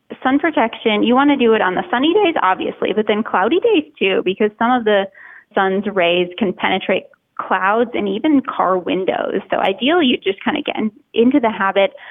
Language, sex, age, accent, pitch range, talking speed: English, female, 20-39, American, 195-260 Hz, 200 wpm